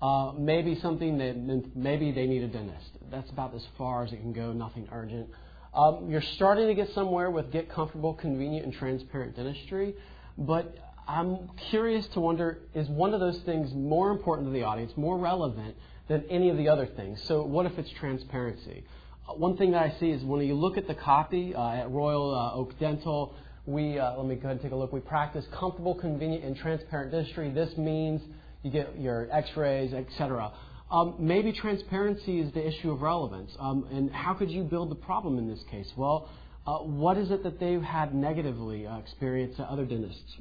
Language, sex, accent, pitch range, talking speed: English, male, American, 130-170 Hz, 205 wpm